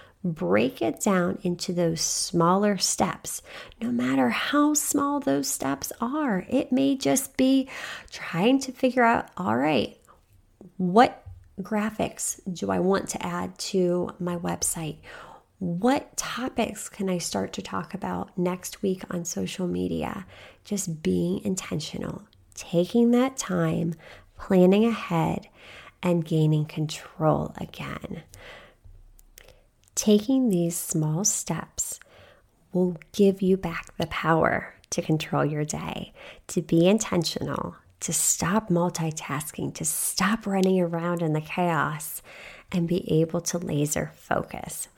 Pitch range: 165-215 Hz